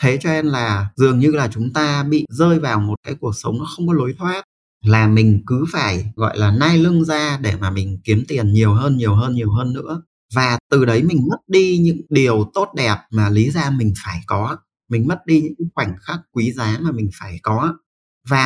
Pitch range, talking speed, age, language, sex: 105-145 Hz, 230 wpm, 30-49, Vietnamese, male